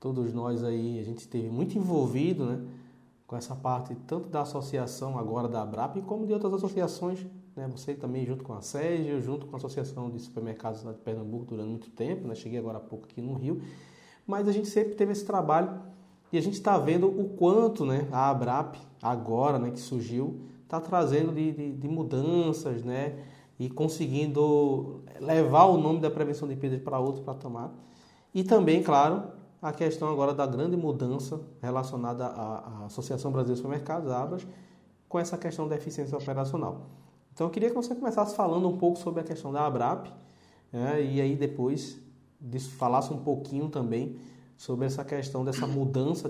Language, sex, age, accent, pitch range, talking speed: Portuguese, male, 20-39, Brazilian, 125-160 Hz, 180 wpm